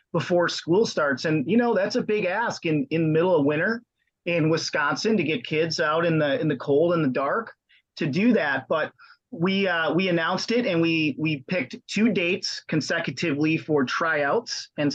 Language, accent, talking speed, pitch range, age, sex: English, American, 195 wpm, 155-180 Hz, 30-49, male